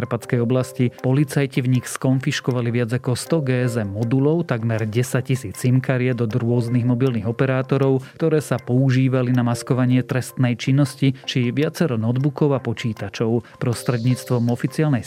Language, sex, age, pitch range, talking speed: Slovak, male, 30-49, 120-135 Hz, 125 wpm